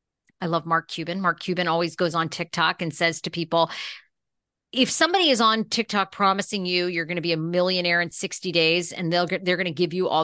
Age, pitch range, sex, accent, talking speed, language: 40-59, 180-245 Hz, female, American, 230 wpm, English